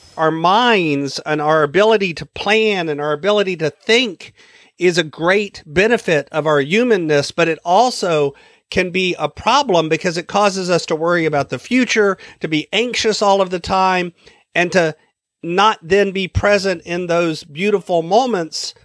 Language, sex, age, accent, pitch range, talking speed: English, male, 50-69, American, 155-200 Hz, 165 wpm